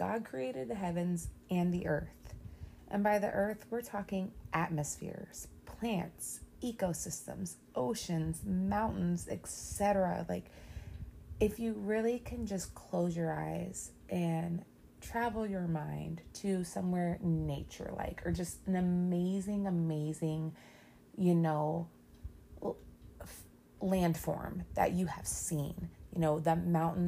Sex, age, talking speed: female, 30-49, 115 wpm